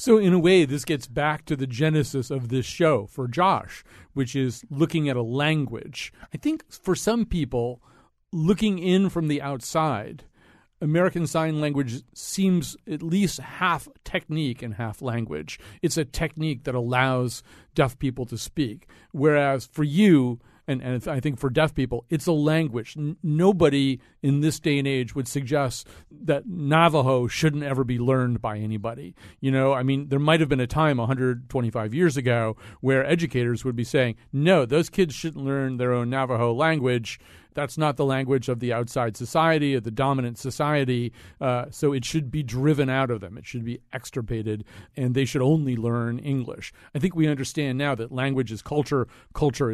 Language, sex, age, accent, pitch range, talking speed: English, male, 50-69, American, 125-155 Hz, 175 wpm